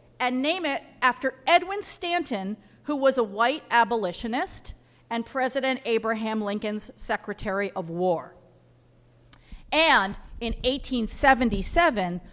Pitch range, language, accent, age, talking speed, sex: 225-320 Hz, English, American, 40-59, 100 wpm, female